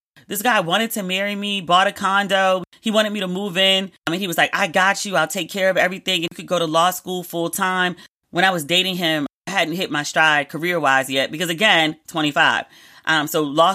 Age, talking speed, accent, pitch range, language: 30-49, 240 wpm, American, 155-200 Hz, English